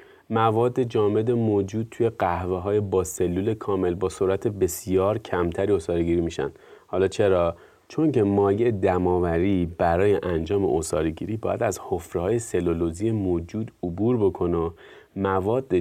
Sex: male